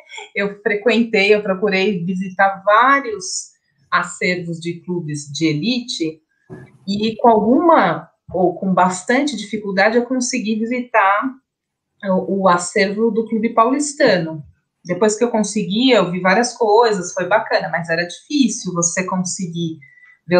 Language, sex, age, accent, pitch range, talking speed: Portuguese, female, 30-49, Brazilian, 180-240 Hz, 125 wpm